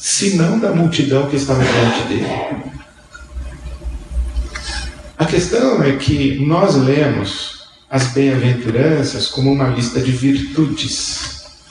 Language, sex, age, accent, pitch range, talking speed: Portuguese, male, 50-69, Brazilian, 115-155 Hz, 110 wpm